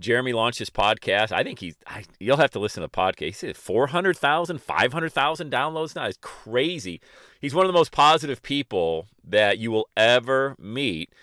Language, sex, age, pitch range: English, male, 40-59, 105-150 Hz